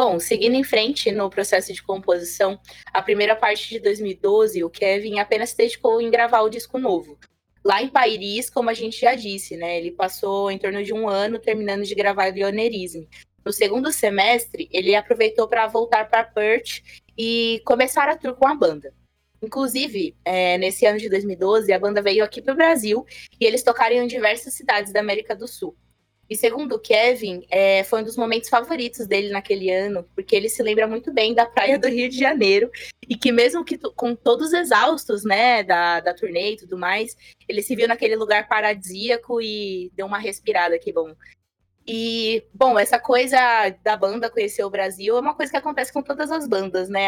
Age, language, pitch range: 20-39, Portuguese, 195-245 Hz